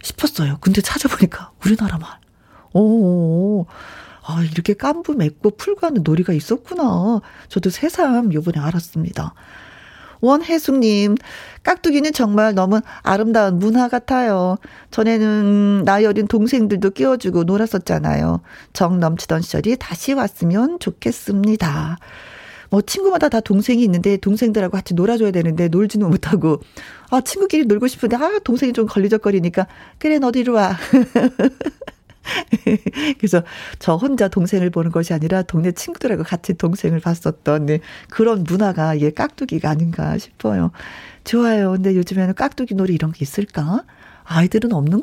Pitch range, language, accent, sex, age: 165-230 Hz, Korean, native, female, 40-59